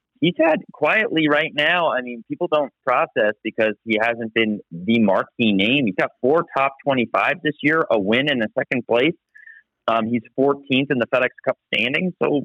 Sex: male